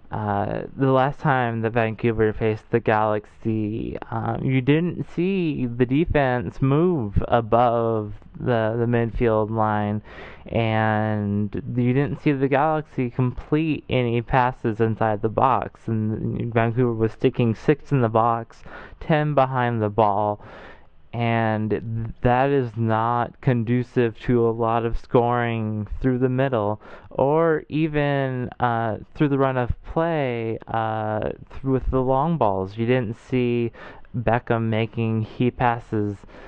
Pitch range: 110-130 Hz